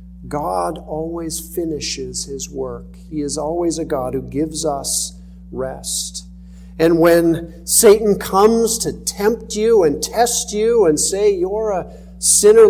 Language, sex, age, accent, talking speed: English, male, 50-69, American, 135 wpm